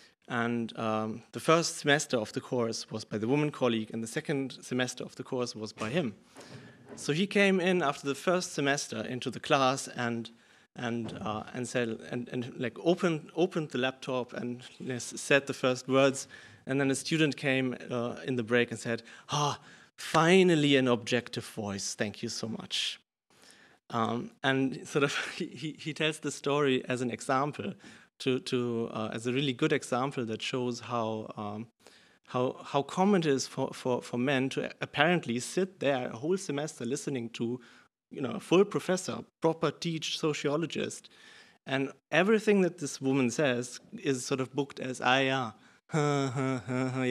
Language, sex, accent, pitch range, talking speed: Dutch, male, German, 120-150 Hz, 180 wpm